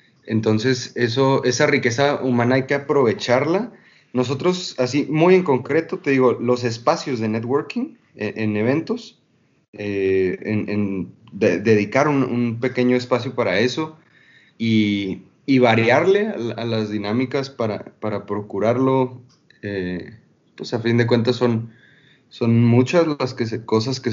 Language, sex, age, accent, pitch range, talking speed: Spanish, male, 30-49, Mexican, 110-135 Hz, 140 wpm